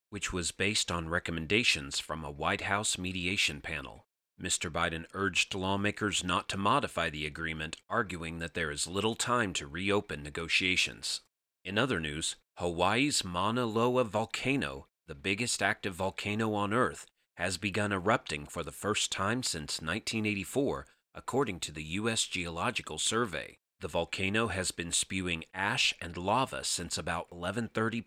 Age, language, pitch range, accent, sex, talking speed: 30-49, English, 85-105 Hz, American, male, 145 wpm